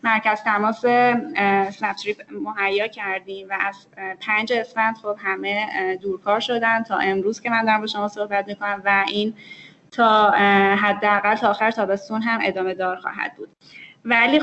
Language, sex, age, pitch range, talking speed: Persian, female, 10-29, 200-235 Hz, 145 wpm